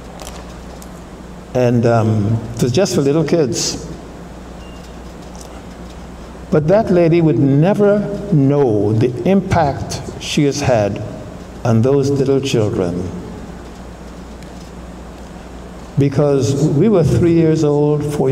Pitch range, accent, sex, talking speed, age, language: 115-155 Hz, American, male, 100 wpm, 60-79, English